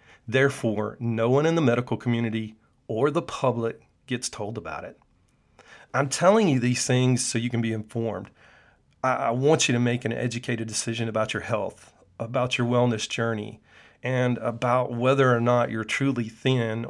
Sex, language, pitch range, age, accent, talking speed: male, English, 115-130 Hz, 40-59, American, 165 wpm